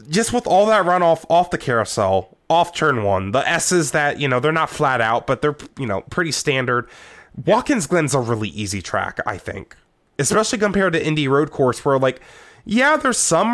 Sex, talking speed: male, 200 wpm